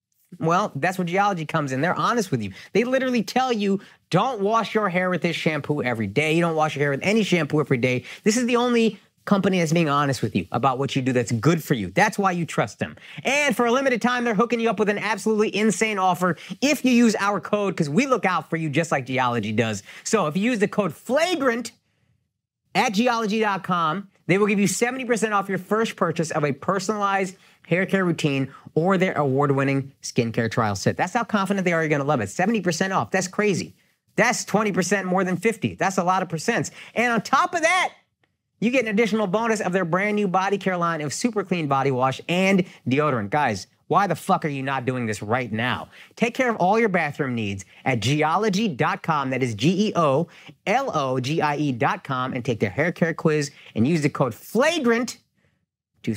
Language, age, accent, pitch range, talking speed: English, 30-49, American, 140-215 Hz, 210 wpm